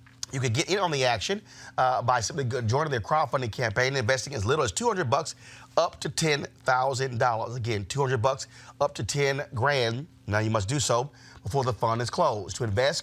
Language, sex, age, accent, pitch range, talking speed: English, male, 30-49, American, 120-140 Hz, 200 wpm